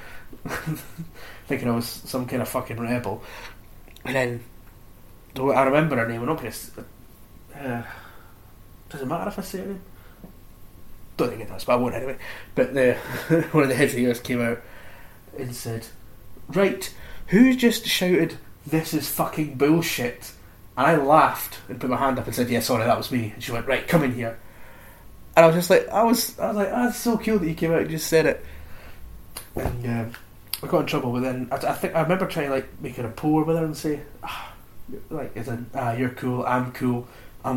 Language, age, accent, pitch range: English, 30-49, British, 110-145 Hz